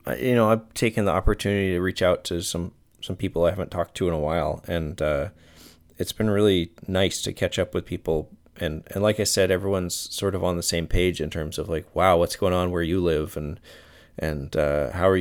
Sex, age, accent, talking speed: male, 20-39, American, 235 wpm